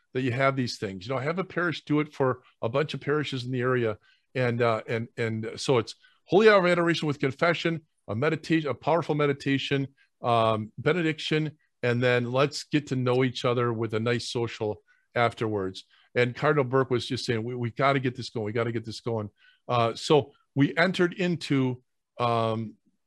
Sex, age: male, 50-69